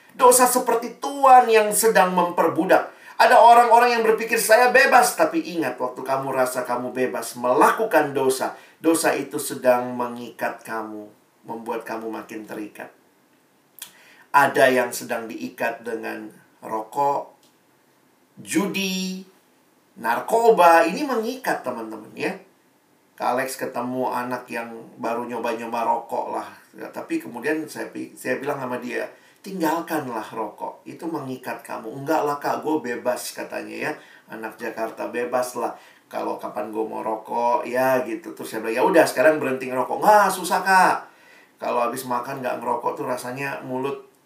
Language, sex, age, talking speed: Indonesian, male, 50-69, 135 wpm